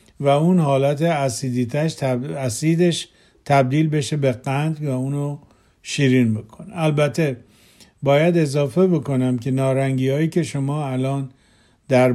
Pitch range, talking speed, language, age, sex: 125-155 Hz, 120 wpm, Persian, 50-69, male